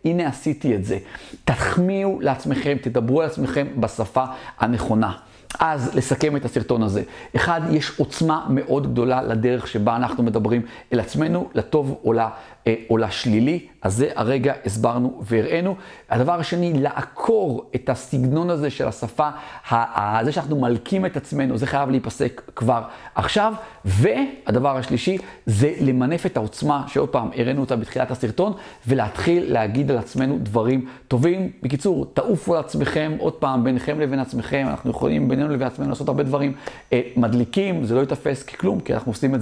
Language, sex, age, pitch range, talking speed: Hebrew, male, 40-59, 120-150 Hz, 150 wpm